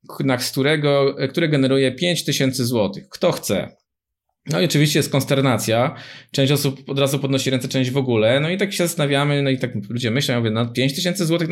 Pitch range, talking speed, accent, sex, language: 125-160 Hz, 200 wpm, native, male, Polish